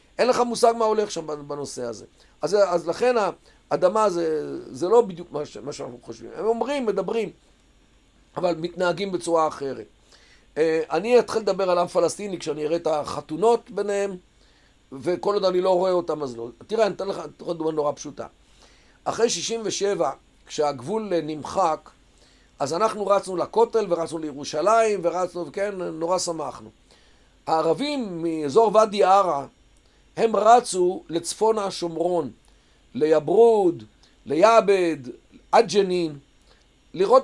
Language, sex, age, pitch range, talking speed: Hebrew, male, 50-69, 155-220 Hz, 130 wpm